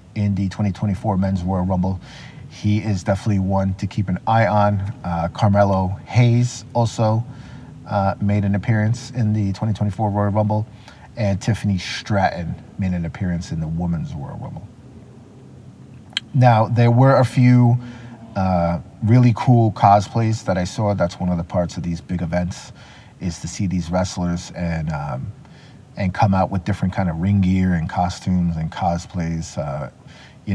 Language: English